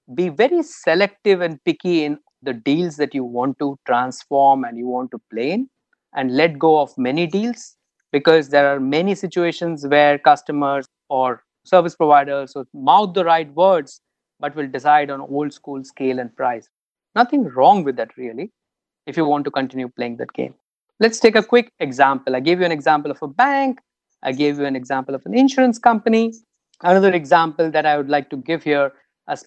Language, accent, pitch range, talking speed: English, Indian, 135-175 Hz, 190 wpm